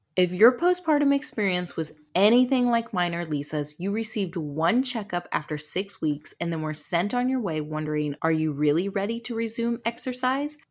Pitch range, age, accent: 170-250 Hz, 30-49, American